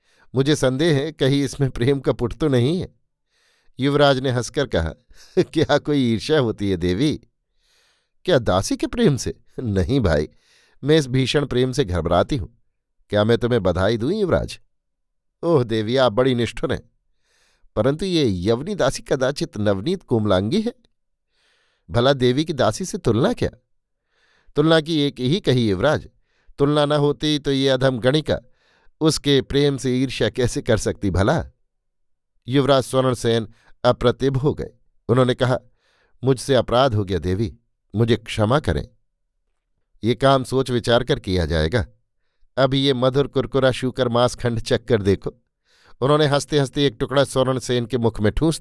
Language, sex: Hindi, male